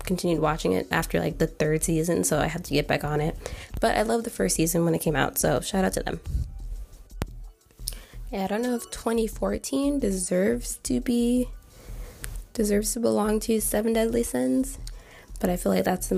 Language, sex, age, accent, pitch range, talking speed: English, female, 20-39, American, 160-195 Hz, 195 wpm